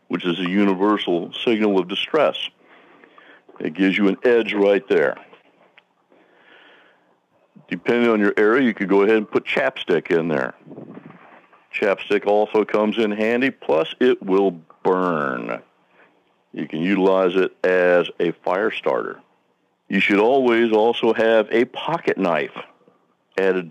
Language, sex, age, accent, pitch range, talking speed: English, male, 60-79, American, 95-115 Hz, 135 wpm